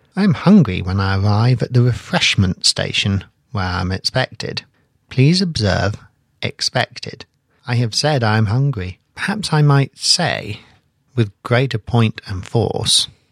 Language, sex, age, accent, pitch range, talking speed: English, male, 50-69, British, 110-140 Hz, 145 wpm